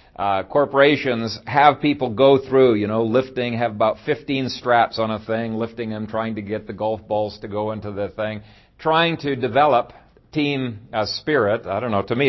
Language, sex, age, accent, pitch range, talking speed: English, male, 50-69, American, 110-140 Hz, 195 wpm